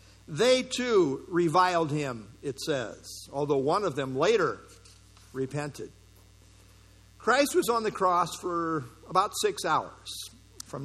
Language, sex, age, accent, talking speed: English, male, 50-69, American, 120 wpm